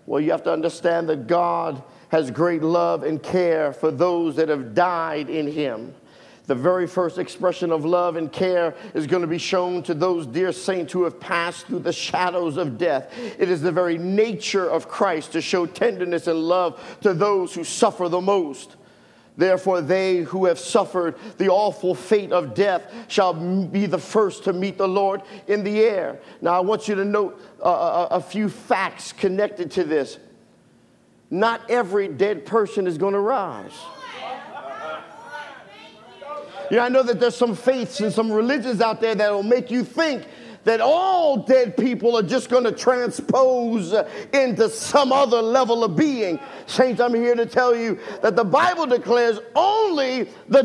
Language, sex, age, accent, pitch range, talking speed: English, male, 50-69, American, 180-245 Hz, 175 wpm